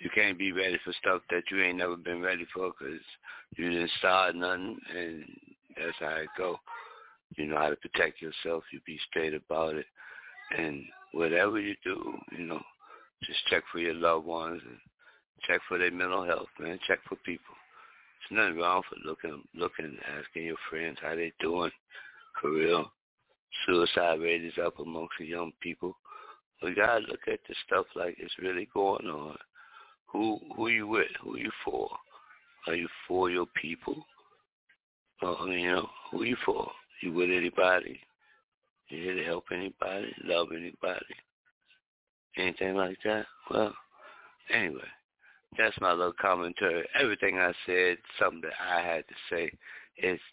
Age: 60-79